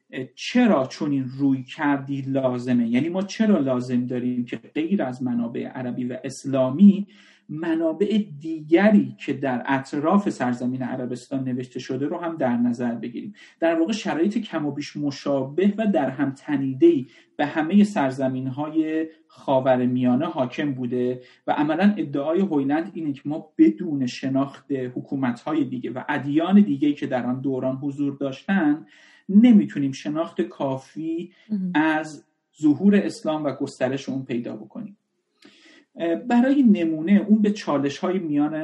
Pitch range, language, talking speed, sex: 130-190 Hz, Persian, 135 wpm, male